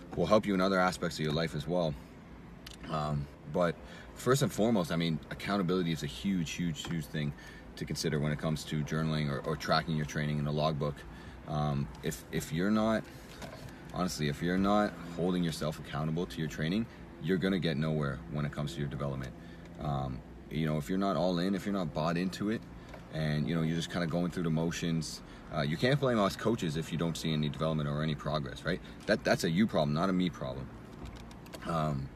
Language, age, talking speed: English, 30-49, 215 wpm